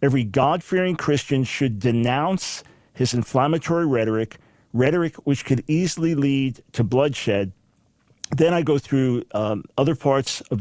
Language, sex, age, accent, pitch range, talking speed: English, male, 50-69, American, 115-140 Hz, 130 wpm